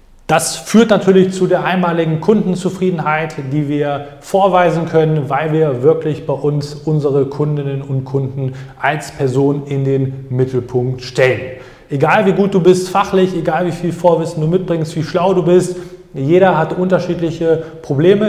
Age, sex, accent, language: 20-39, male, German, German